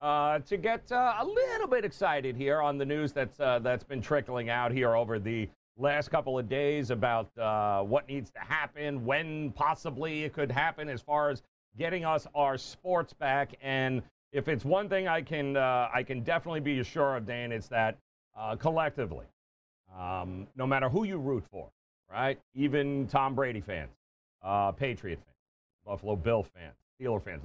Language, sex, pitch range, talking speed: English, male, 120-150 Hz, 180 wpm